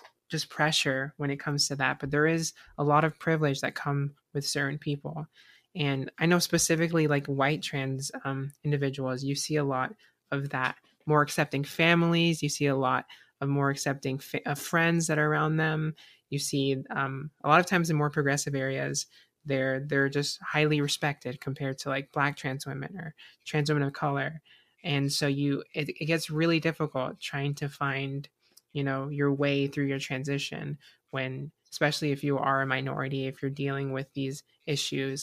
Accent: American